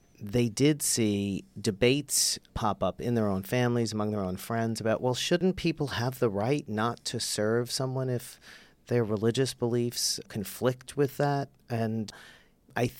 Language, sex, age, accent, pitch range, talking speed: English, male, 40-59, American, 105-130 Hz, 155 wpm